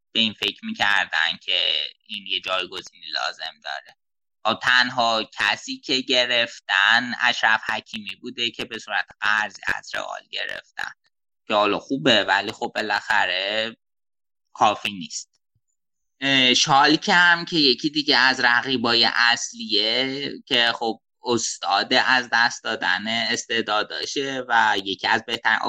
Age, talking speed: 20-39, 120 wpm